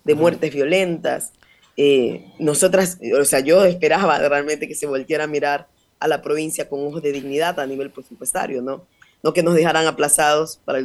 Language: Spanish